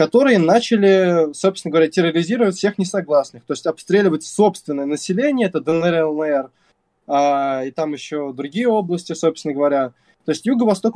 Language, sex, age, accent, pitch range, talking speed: Russian, male, 20-39, native, 145-195 Hz, 140 wpm